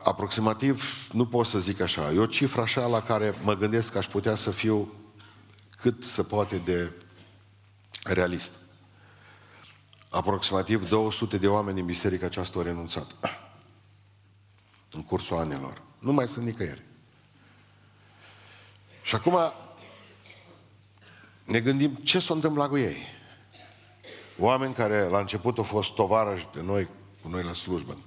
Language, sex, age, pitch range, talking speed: Romanian, male, 50-69, 100-125 Hz, 135 wpm